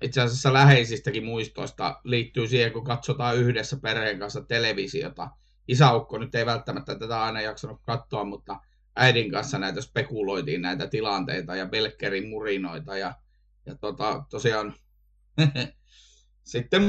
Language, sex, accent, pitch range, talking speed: Finnish, male, native, 115-140 Hz, 120 wpm